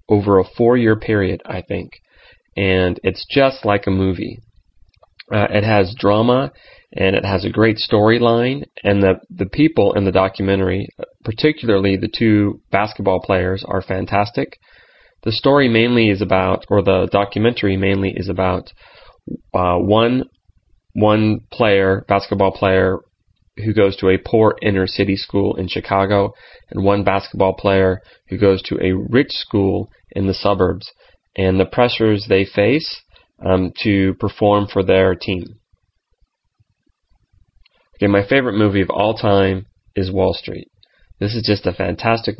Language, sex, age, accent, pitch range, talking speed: English, male, 30-49, American, 95-110 Hz, 145 wpm